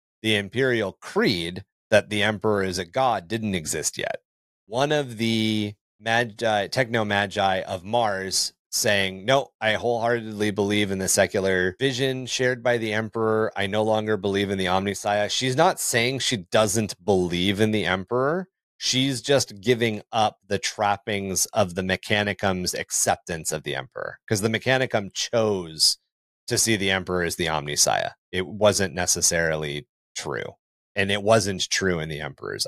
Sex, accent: male, American